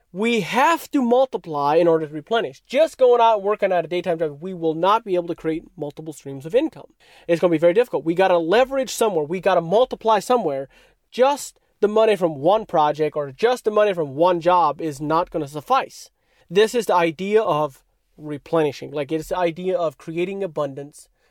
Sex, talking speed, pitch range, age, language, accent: male, 210 wpm, 165-225 Hz, 30-49, English, American